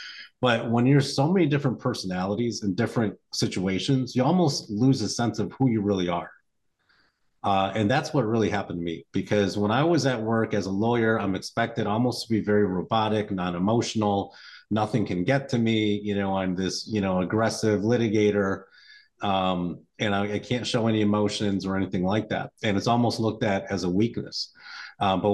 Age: 30-49